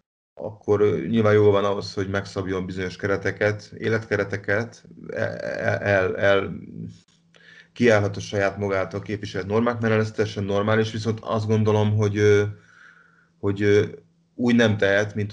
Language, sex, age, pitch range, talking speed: Hungarian, male, 30-49, 95-105 Hz, 120 wpm